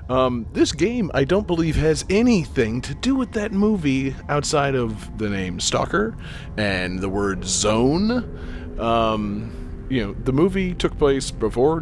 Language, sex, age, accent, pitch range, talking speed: English, male, 30-49, American, 95-130 Hz, 150 wpm